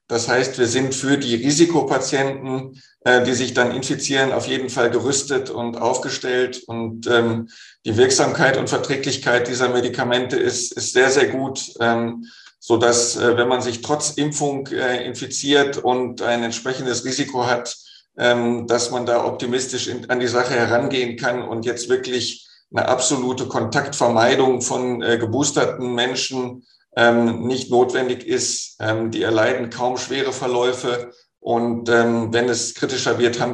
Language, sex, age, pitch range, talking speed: German, male, 50-69, 115-125 Hz, 145 wpm